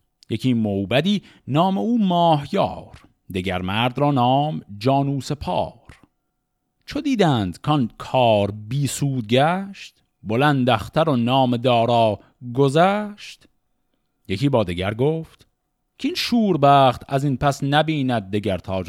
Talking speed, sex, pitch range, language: 120 wpm, male, 105-155 Hz, Persian